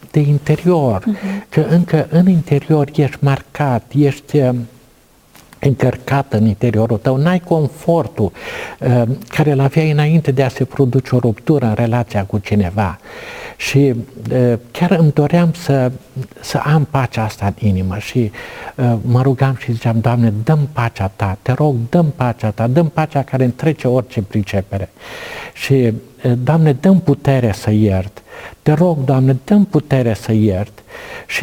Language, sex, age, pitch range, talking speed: Romanian, male, 60-79, 120-155 Hz, 145 wpm